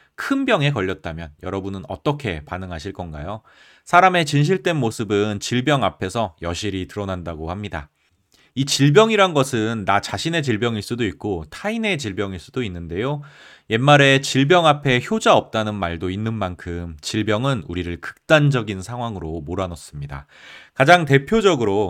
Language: Korean